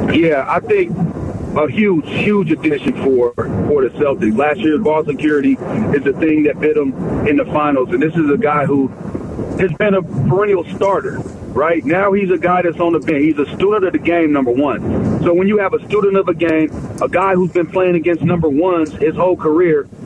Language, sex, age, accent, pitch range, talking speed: English, male, 40-59, American, 150-190 Hz, 215 wpm